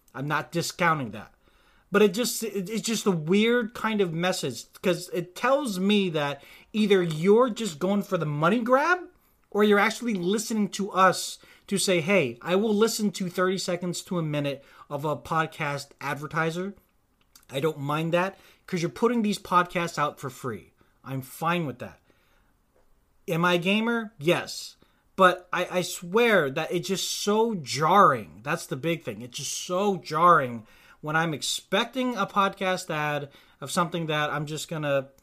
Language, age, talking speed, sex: English, 30-49, 170 wpm, male